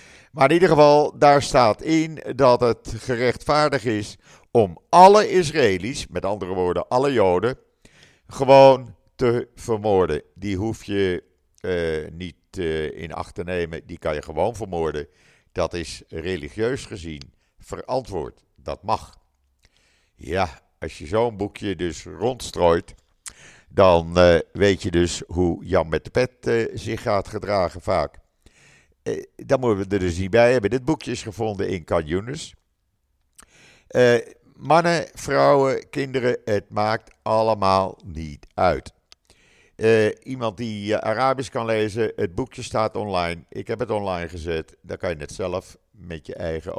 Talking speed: 145 wpm